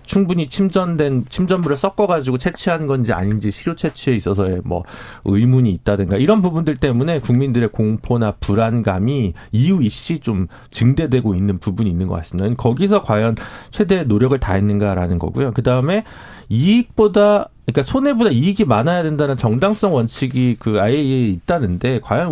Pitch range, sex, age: 105-165 Hz, male, 40-59